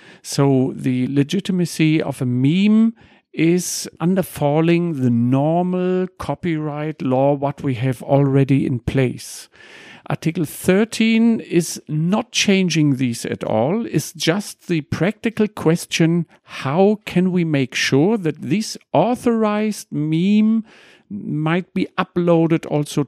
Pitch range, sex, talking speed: 130-175 Hz, male, 115 wpm